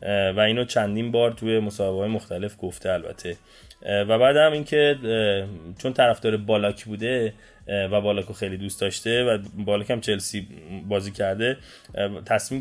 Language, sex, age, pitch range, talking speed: Persian, male, 20-39, 105-125 Hz, 145 wpm